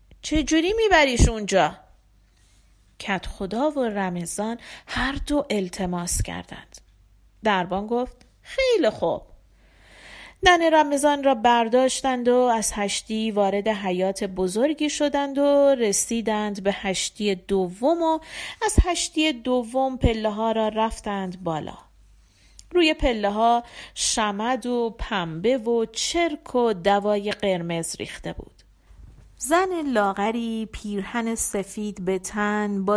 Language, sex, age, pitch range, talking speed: Persian, female, 40-59, 200-290 Hz, 110 wpm